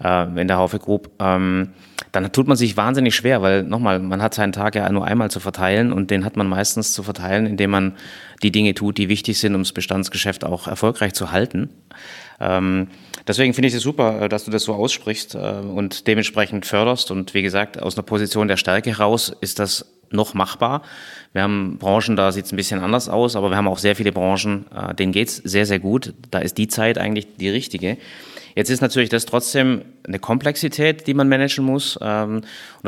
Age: 30-49